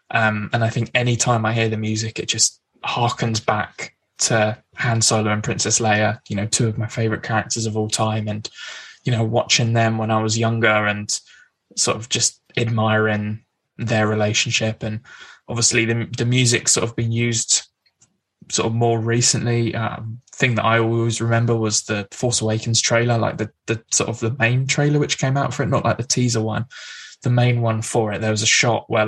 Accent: British